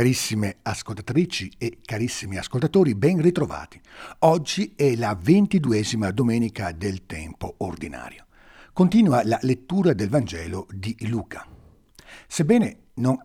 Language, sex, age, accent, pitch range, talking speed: Italian, male, 60-79, native, 100-155 Hz, 110 wpm